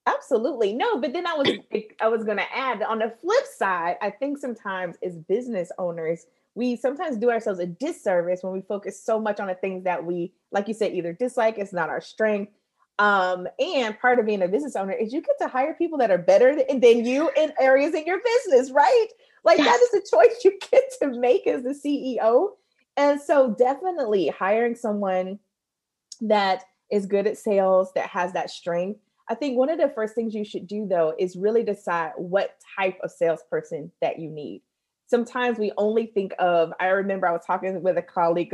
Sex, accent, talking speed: female, American, 200 wpm